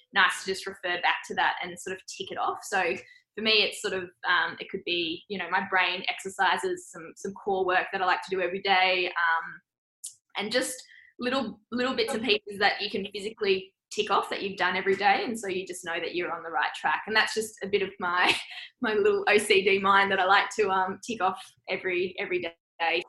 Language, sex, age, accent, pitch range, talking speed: English, female, 10-29, Australian, 185-220 Hz, 235 wpm